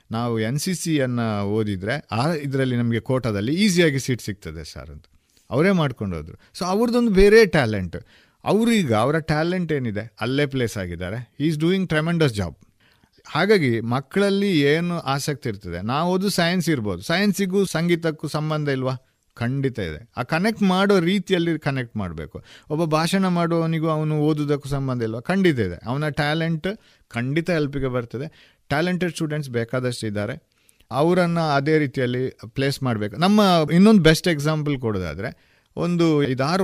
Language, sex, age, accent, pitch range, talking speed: Kannada, male, 50-69, native, 115-170 Hz, 140 wpm